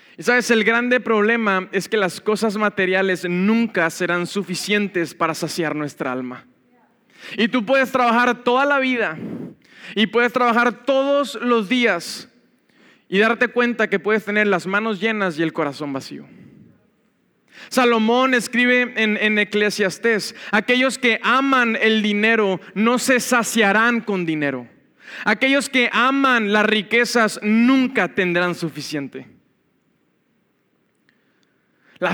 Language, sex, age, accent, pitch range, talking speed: Spanish, male, 20-39, Mexican, 200-250 Hz, 125 wpm